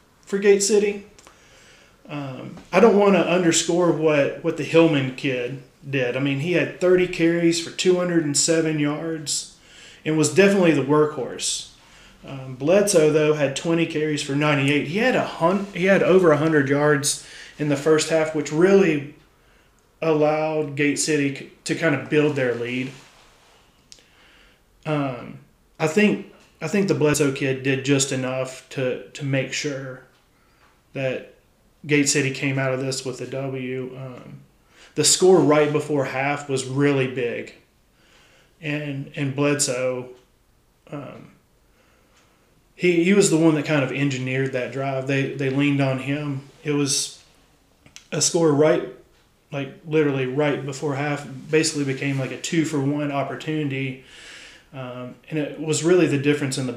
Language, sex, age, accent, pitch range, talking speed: English, male, 30-49, American, 135-160 Hz, 155 wpm